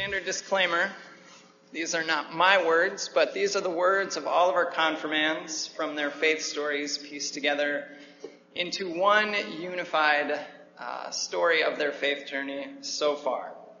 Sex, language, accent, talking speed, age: male, English, American, 150 wpm, 30-49